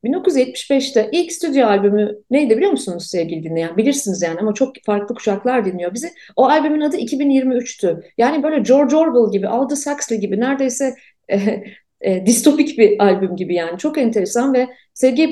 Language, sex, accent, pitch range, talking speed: Turkish, female, native, 215-285 Hz, 160 wpm